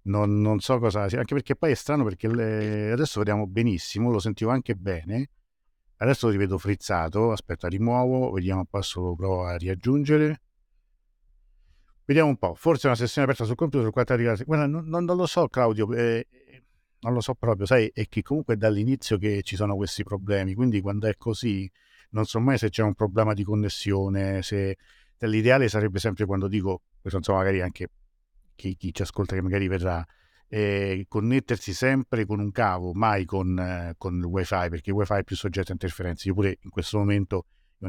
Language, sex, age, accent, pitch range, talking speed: Italian, male, 50-69, native, 95-115 Hz, 185 wpm